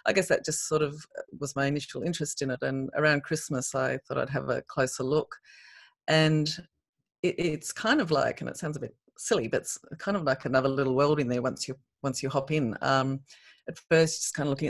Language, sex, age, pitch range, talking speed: English, female, 30-49, 135-155 Hz, 235 wpm